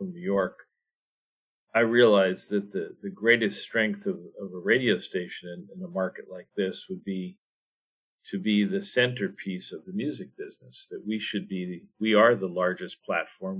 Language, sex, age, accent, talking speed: English, male, 50-69, American, 175 wpm